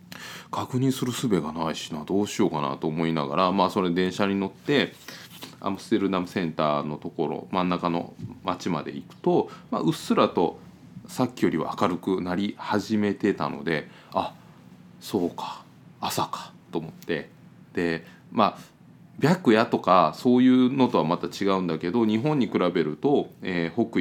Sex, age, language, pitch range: male, 20-39, Japanese, 80-110 Hz